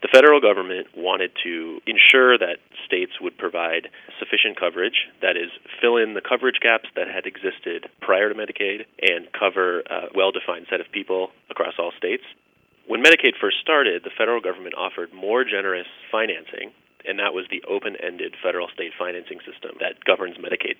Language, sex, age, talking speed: English, male, 30-49, 165 wpm